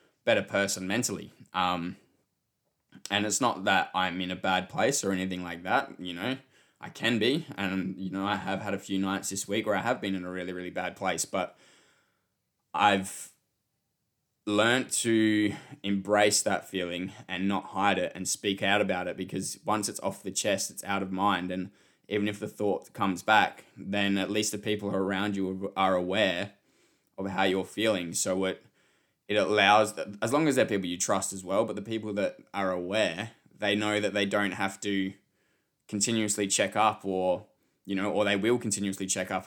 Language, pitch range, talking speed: English, 95-105 Hz, 195 wpm